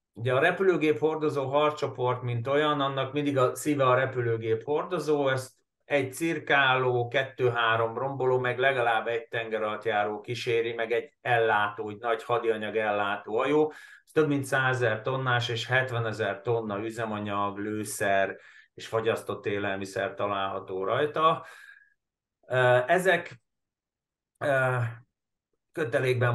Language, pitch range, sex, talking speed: Hungarian, 115-145 Hz, male, 120 wpm